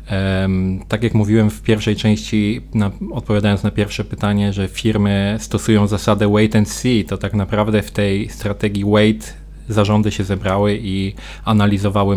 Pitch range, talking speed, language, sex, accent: 100-110 Hz, 150 wpm, Polish, male, native